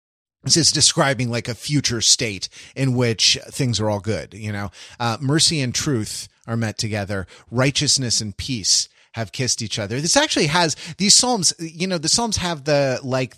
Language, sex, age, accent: English, male, 30-49, American